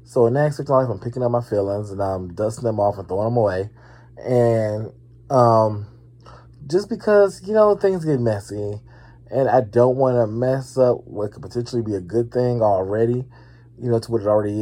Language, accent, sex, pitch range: English, American, male, 110-125 Hz